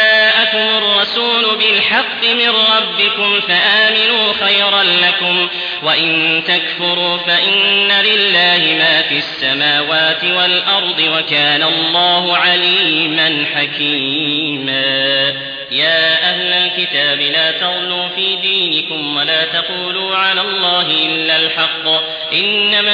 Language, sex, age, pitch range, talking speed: English, male, 30-49, 160-195 Hz, 85 wpm